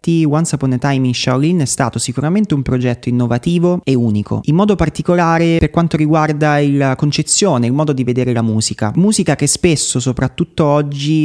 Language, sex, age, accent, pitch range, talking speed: Italian, male, 30-49, native, 120-155 Hz, 175 wpm